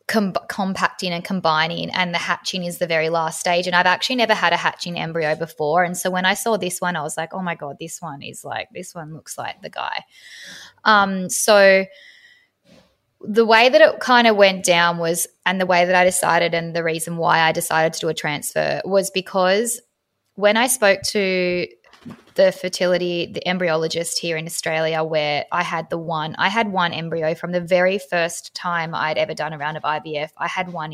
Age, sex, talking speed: 20-39, female, 210 wpm